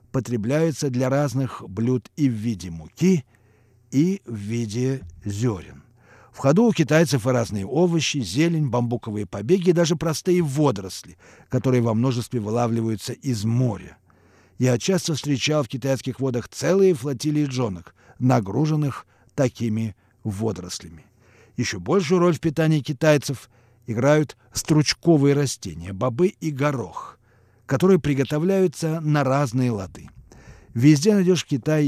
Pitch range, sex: 115-150 Hz, male